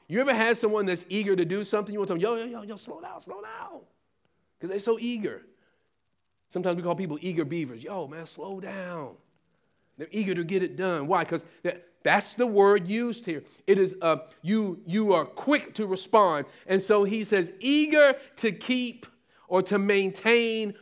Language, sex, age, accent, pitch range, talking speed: English, male, 40-59, American, 180-230 Hz, 195 wpm